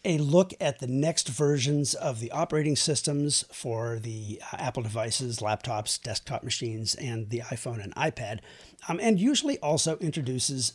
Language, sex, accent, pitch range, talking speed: English, male, American, 120-150 Hz, 150 wpm